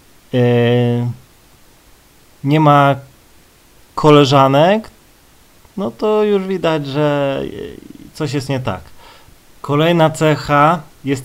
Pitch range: 125-145 Hz